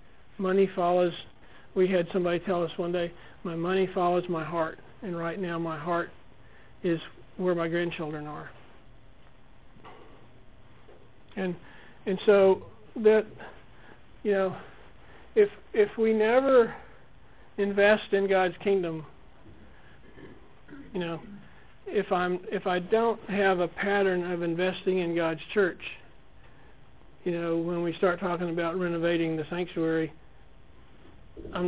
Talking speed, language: 120 wpm, English